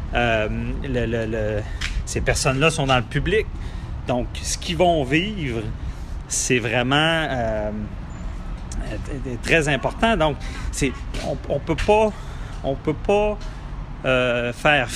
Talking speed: 130 wpm